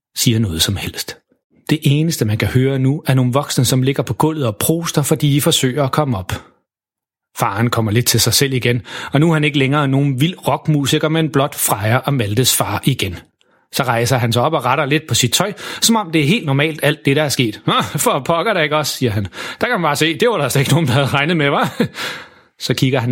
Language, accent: Danish, native